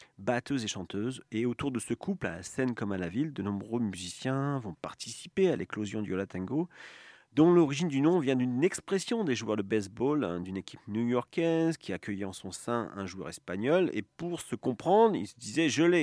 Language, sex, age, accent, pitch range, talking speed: French, male, 40-59, French, 100-145 Hz, 205 wpm